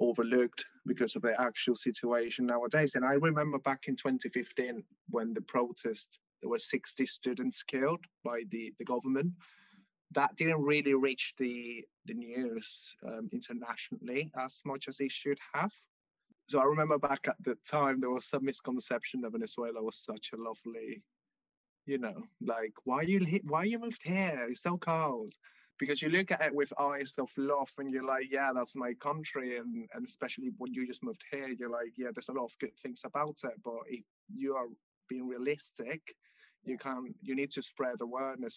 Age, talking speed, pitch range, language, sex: 20-39, 185 wpm, 125-155 Hz, English, male